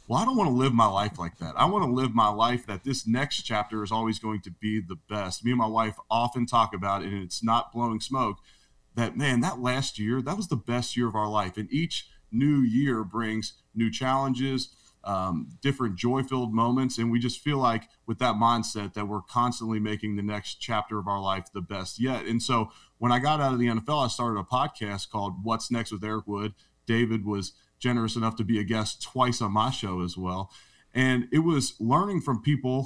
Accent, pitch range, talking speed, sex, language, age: American, 105-130 Hz, 225 wpm, male, English, 30-49